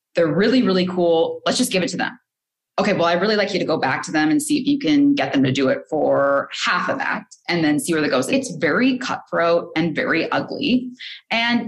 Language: English